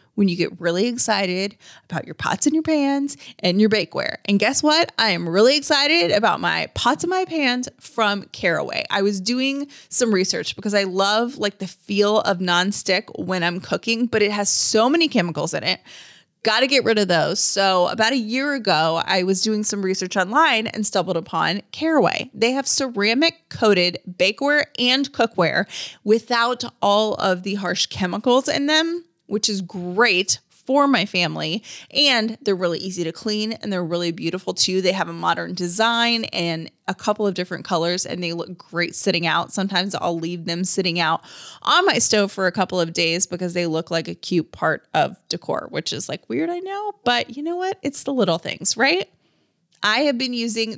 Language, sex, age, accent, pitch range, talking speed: English, female, 20-39, American, 180-245 Hz, 195 wpm